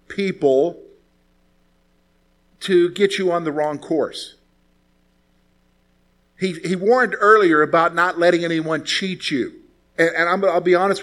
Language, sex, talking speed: English, male, 130 wpm